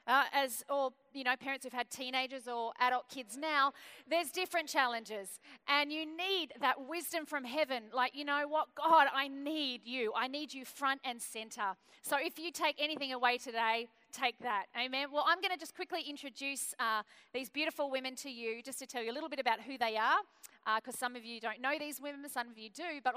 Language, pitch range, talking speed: English, 220-280 Hz, 220 wpm